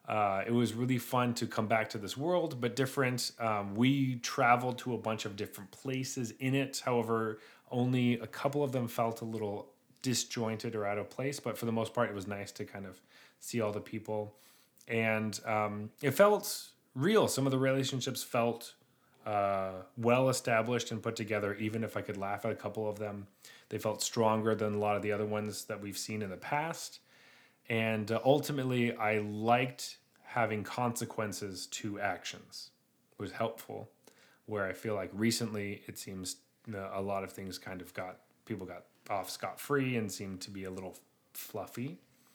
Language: English